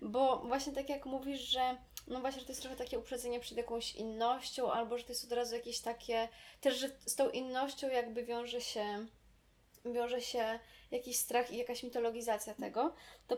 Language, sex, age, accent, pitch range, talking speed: Polish, female, 20-39, native, 225-255 Hz, 190 wpm